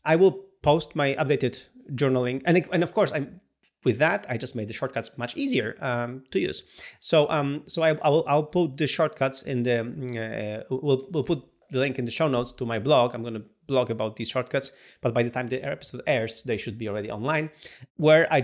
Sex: male